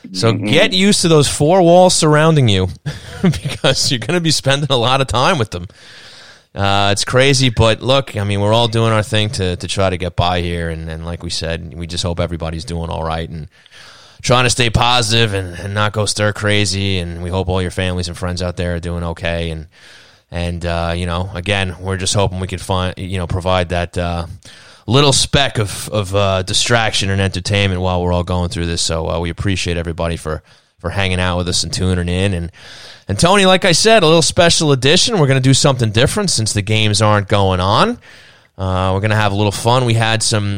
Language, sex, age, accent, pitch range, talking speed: English, male, 30-49, American, 90-125 Hz, 225 wpm